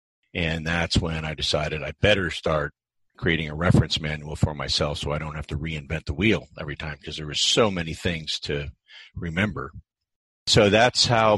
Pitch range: 80-105 Hz